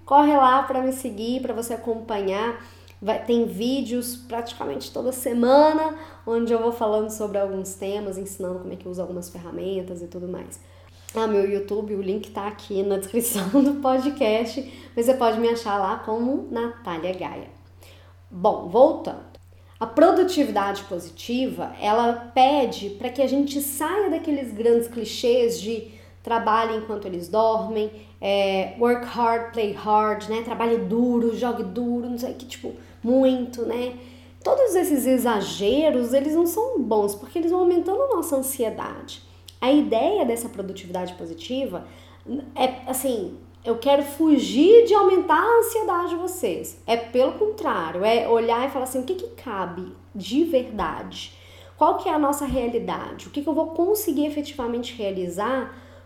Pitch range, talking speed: 200-270 Hz, 155 wpm